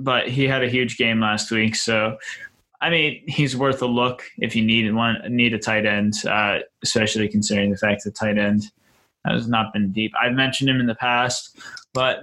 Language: English